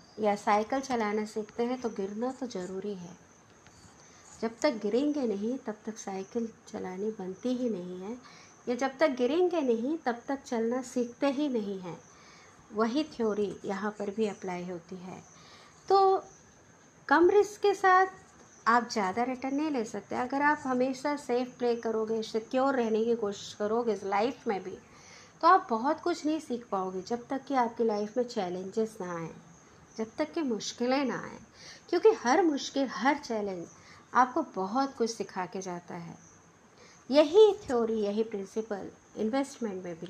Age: 50-69